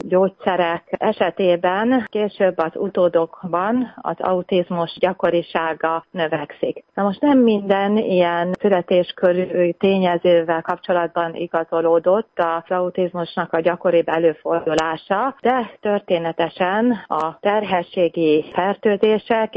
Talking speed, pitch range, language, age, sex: 85 wpm, 165-190 Hz, Hungarian, 30-49, female